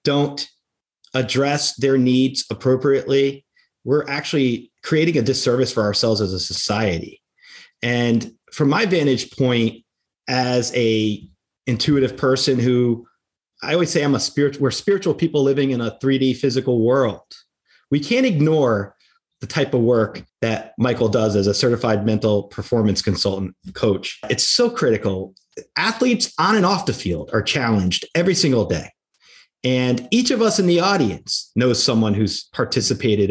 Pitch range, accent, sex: 110-150 Hz, American, male